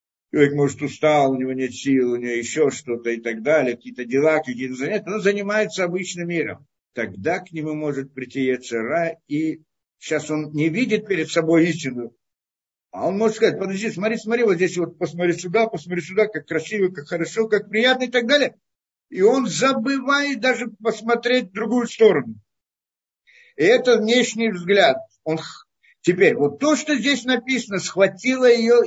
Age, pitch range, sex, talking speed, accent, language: 60-79, 155-225 Hz, male, 165 wpm, native, Russian